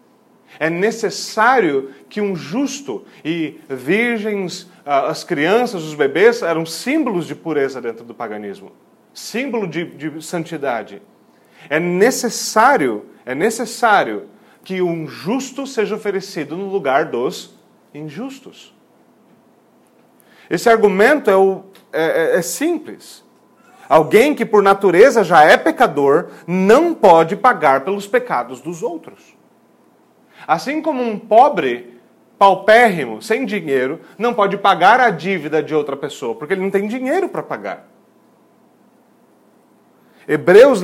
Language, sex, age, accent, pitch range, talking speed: Portuguese, male, 40-59, Brazilian, 165-235 Hz, 115 wpm